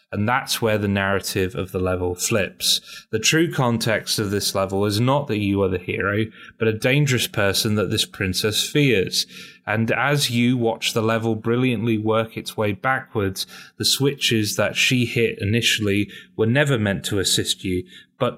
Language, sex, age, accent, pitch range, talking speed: English, male, 30-49, British, 100-125 Hz, 175 wpm